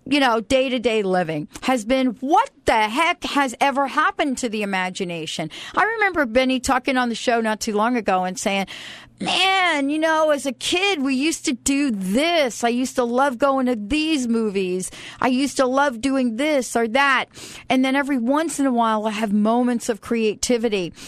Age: 50-69